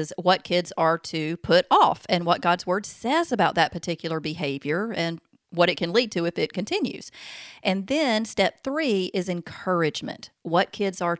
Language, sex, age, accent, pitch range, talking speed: English, female, 40-59, American, 165-200 Hz, 175 wpm